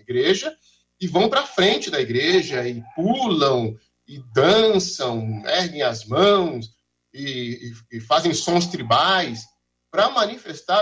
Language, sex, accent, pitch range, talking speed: Portuguese, male, Brazilian, 125-195 Hz, 120 wpm